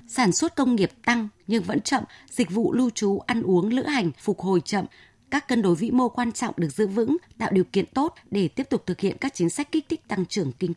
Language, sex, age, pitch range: Vietnamese, female, 20-39, 185-245 Hz